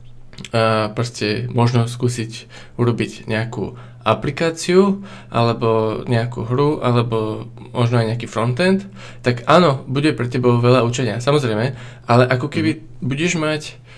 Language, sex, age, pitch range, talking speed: Slovak, male, 20-39, 120-130 Hz, 115 wpm